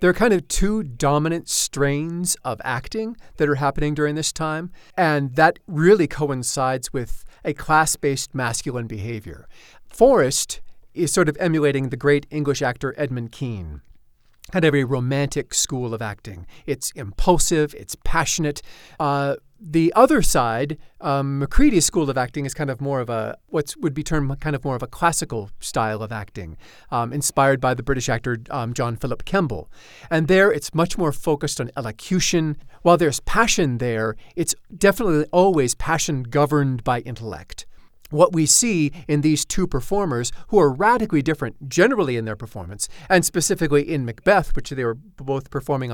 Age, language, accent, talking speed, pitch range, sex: 40-59, English, American, 165 wpm, 125-165 Hz, male